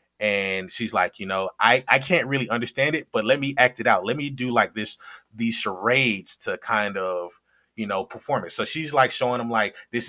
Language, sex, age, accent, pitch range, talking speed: English, male, 20-39, American, 110-135 Hz, 225 wpm